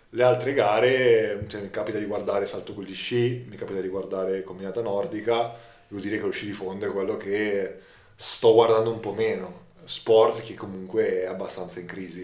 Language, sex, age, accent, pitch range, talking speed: Italian, male, 20-39, native, 90-105 Hz, 195 wpm